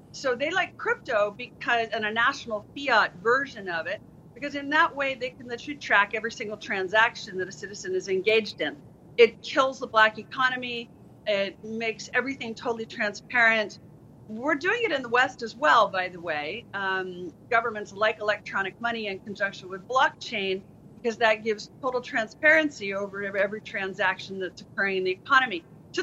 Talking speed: 170 wpm